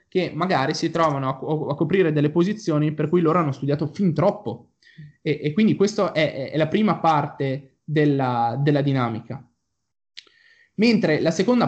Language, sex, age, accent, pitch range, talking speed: Italian, male, 20-39, native, 135-165 Hz, 160 wpm